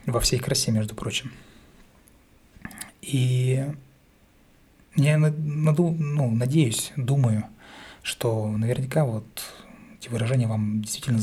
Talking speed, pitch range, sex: 90 wpm, 110-135 Hz, male